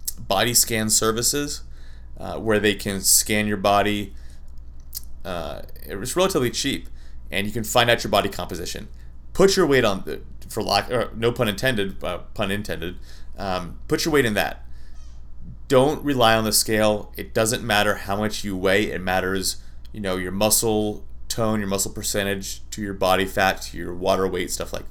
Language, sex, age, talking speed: English, male, 30-49, 175 wpm